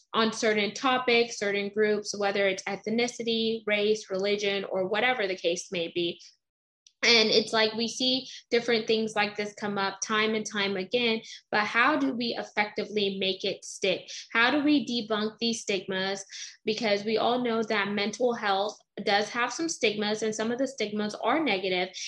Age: 10-29